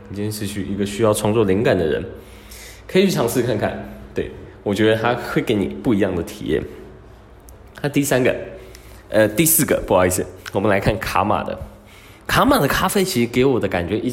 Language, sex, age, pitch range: Chinese, male, 20-39, 100-150 Hz